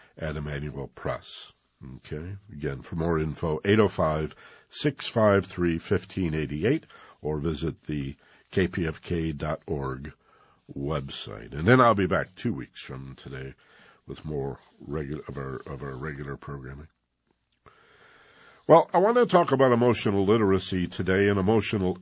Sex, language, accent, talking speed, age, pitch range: male, English, American, 115 wpm, 50-69, 80-105 Hz